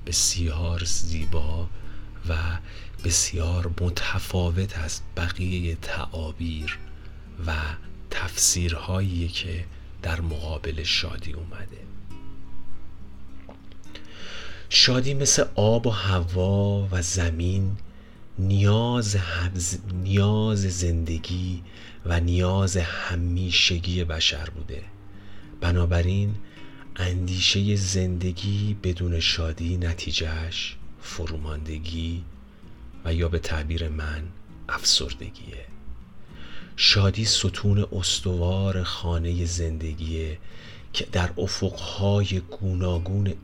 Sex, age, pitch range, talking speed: male, 40-59, 85-95 Hz, 70 wpm